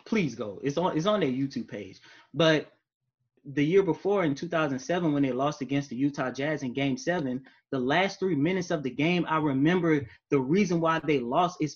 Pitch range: 135-170 Hz